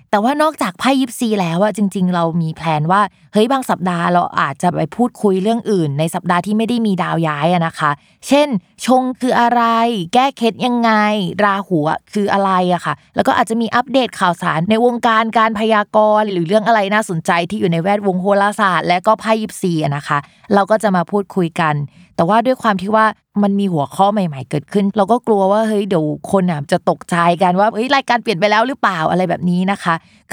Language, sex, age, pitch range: Thai, female, 20-39, 170-220 Hz